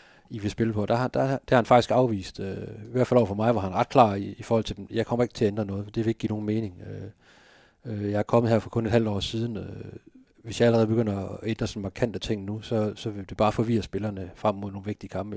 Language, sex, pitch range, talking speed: Danish, male, 100-120 Hz, 295 wpm